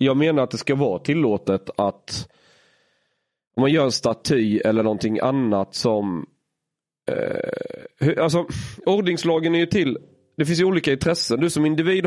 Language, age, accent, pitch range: Swedish, 30-49, native, 105-145 Hz